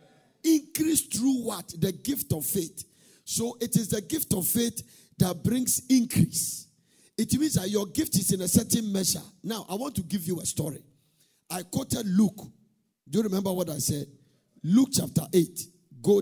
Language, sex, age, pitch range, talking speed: English, male, 50-69, 150-210 Hz, 180 wpm